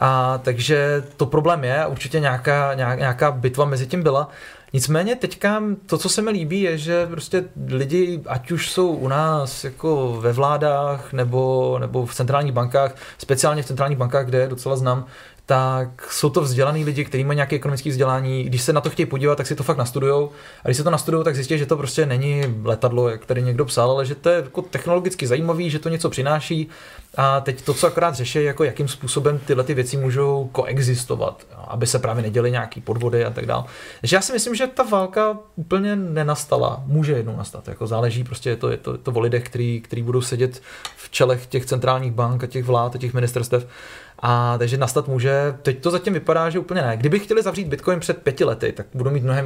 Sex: male